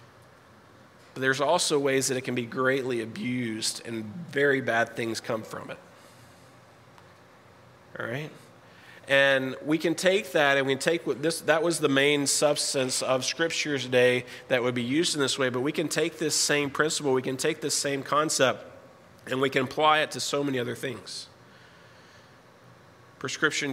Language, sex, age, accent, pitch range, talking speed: English, male, 30-49, American, 120-145 Hz, 175 wpm